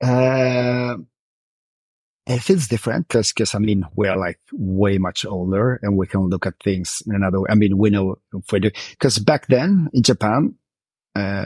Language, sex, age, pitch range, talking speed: English, male, 30-49, 95-120 Hz, 185 wpm